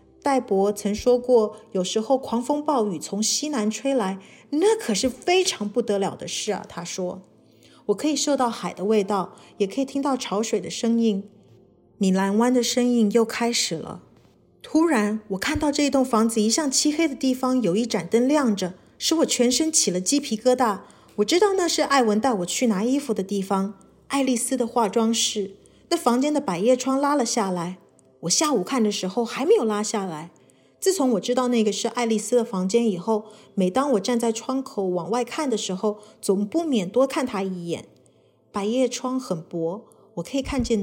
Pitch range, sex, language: 205-265 Hz, female, Chinese